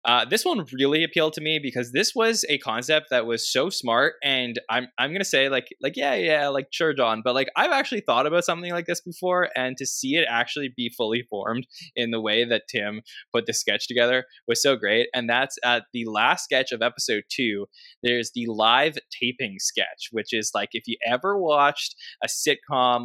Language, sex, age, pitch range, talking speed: English, male, 20-39, 110-145 Hz, 215 wpm